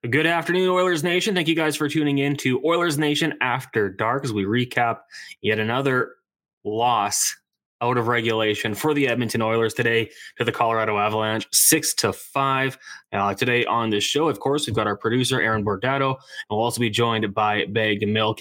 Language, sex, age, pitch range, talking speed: English, male, 20-39, 110-130 Hz, 185 wpm